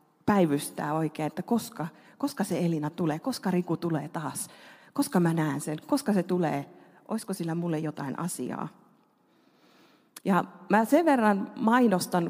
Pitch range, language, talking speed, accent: 170-210 Hz, Finnish, 140 wpm, native